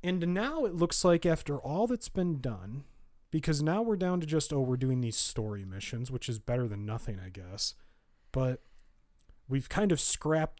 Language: English